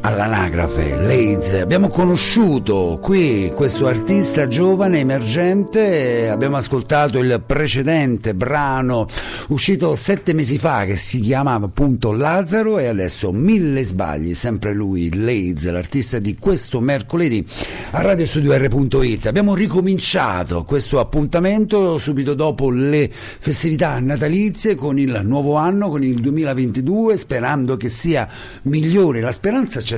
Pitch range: 110-155 Hz